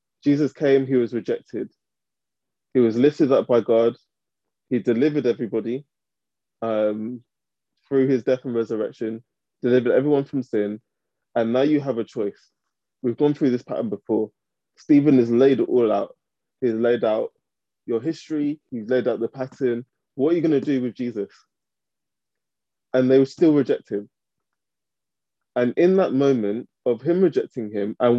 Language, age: English, 20-39